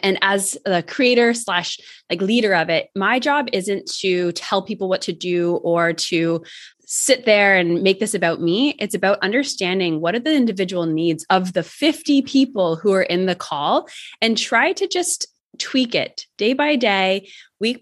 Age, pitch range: 20-39, 175-220 Hz